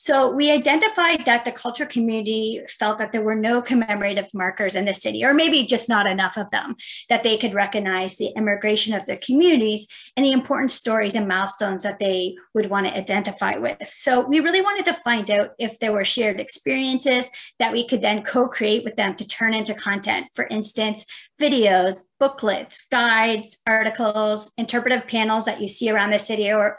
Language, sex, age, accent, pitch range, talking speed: English, female, 30-49, American, 205-250 Hz, 190 wpm